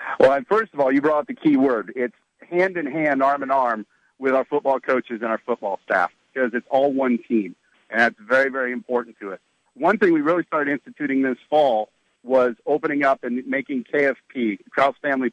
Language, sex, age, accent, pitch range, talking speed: English, male, 50-69, American, 130-170 Hz, 210 wpm